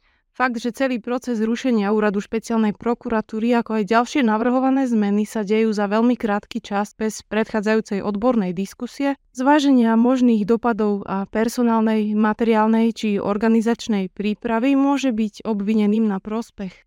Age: 20-39